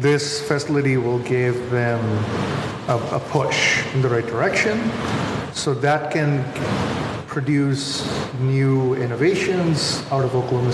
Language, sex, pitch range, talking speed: English, male, 125-145 Hz, 115 wpm